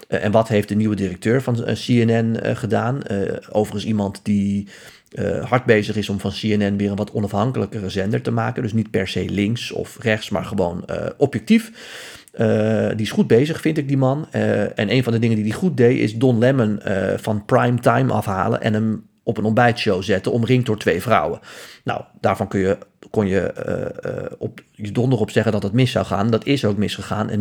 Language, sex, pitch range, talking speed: Dutch, male, 105-135 Hz, 210 wpm